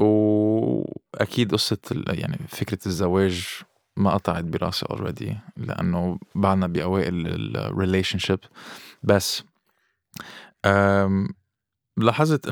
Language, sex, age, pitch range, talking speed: Arabic, male, 20-39, 90-105 Hz, 80 wpm